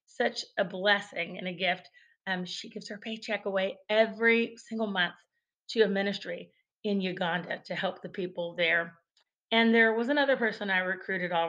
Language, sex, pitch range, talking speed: English, female, 185-230 Hz, 170 wpm